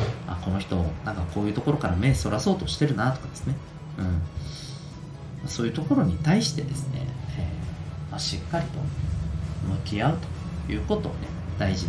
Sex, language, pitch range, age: male, Japanese, 85-135 Hz, 40-59